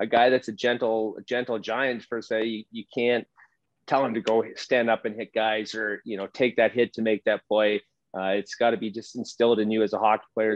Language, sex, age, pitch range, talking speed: English, male, 30-49, 105-120 Hz, 250 wpm